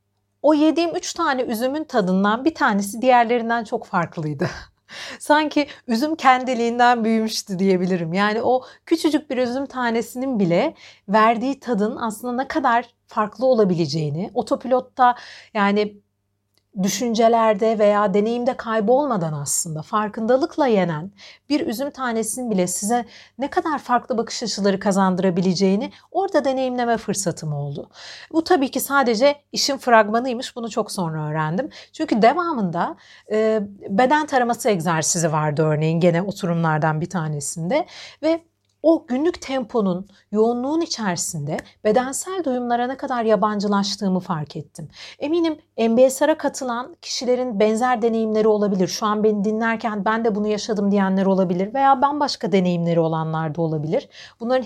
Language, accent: Turkish, native